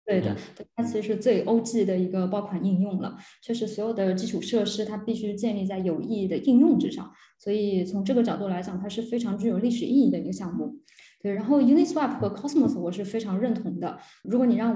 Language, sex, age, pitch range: Chinese, female, 20-39, 195-250 Hz